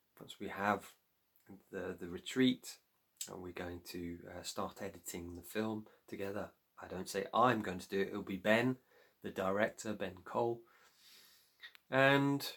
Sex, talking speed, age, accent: male, 160 wpm, 30-49, British